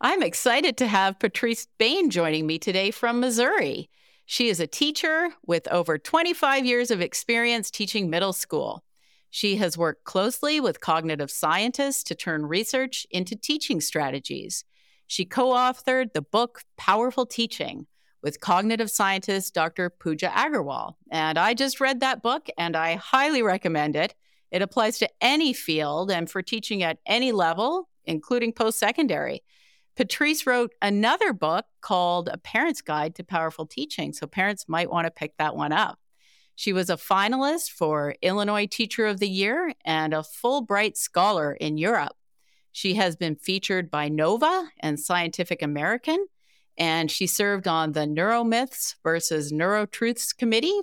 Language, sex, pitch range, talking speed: English, female, 165-250 Hz, 150 wpm